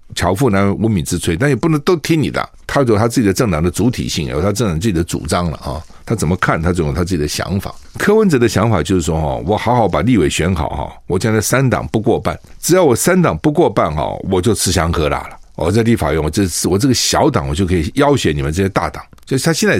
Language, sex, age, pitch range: Chinese, male, 60-79, 85-120 Hz